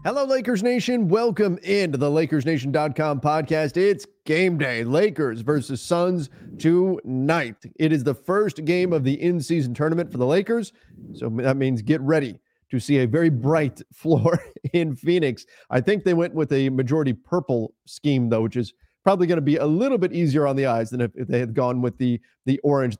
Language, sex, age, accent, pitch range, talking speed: English, male, 40-59, American, 135-165 Hz, 190 wpm